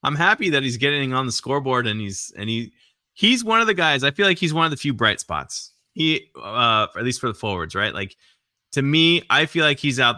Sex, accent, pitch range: male, American, 100-130 Hz